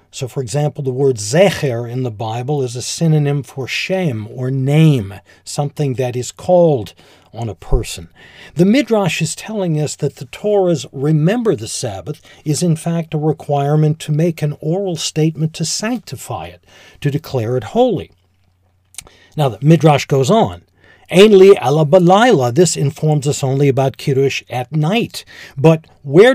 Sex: male